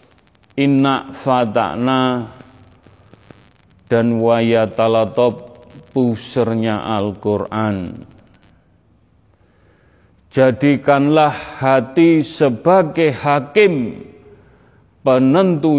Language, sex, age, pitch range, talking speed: Indonesian, male, 40-59, 110-150 Hz, 40 wpm